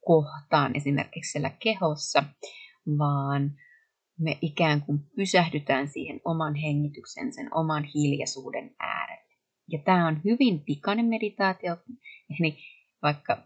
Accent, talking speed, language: native, 100 wpm, Finnish